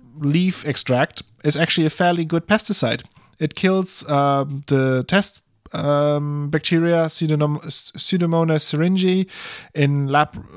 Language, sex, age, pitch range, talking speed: English, male, 20-39, 125-155 Hz, 110 wpm